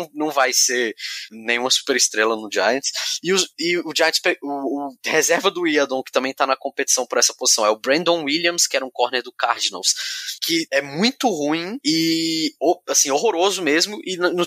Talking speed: 190 wpm